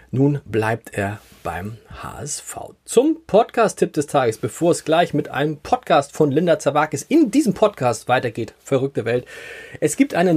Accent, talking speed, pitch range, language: German, 155 wpm, 125-165 Hz, German